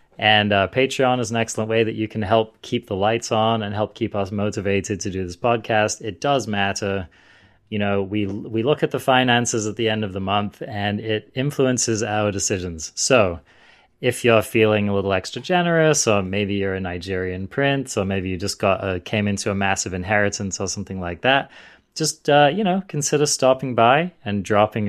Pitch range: 100-120 Hz